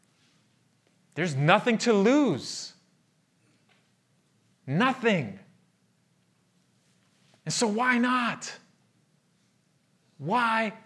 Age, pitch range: 30-49, 120-165 Hz